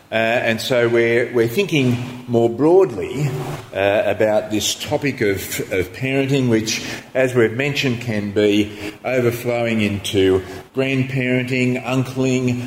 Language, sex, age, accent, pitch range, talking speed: English, male, 40-59, Australian, 105-130 Hz, 120 wpm